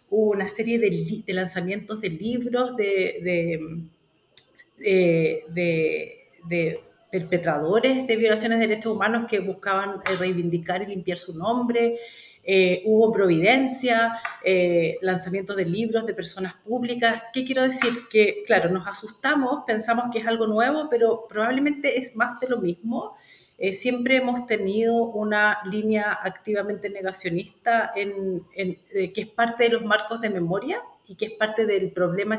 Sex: female